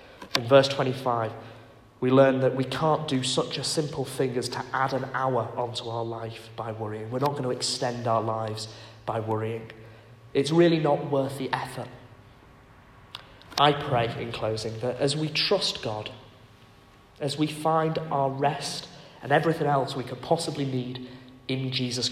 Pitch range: 115-140 Hz